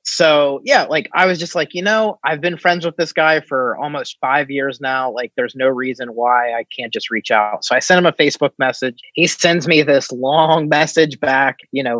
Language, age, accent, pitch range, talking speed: English, 30-49, American, 130-160 Hz, 230 wpm